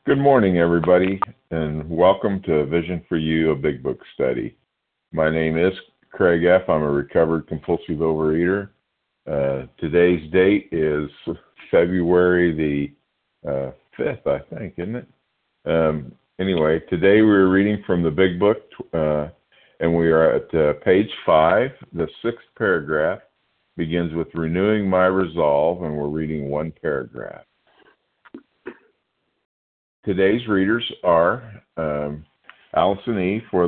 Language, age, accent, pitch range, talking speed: English, 50-69, American, 80-95 Hz, 130 wpm